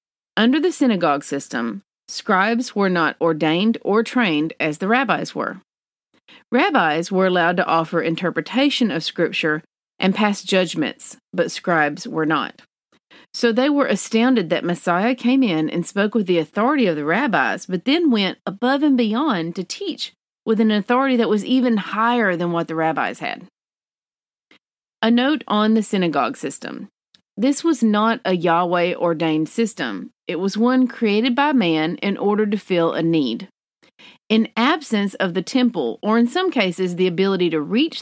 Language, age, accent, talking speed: English, 40-59, American, 160 wpm